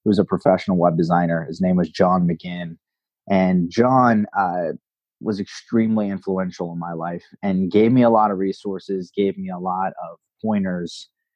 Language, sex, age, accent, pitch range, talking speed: English, male, 30-49, American, 95-120 Hz, 175 wpm